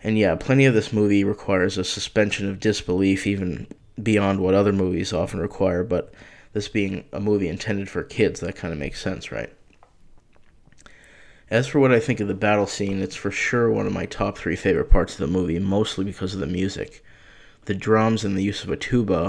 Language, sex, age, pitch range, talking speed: English, male, 20-39, 95-110 Hz, 210 wpm